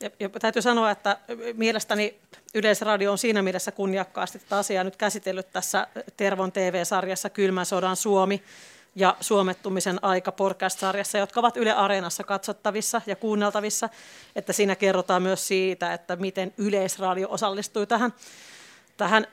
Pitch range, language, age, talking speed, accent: 195-235 Hz, Finnish, 40-59, 130 wpm, native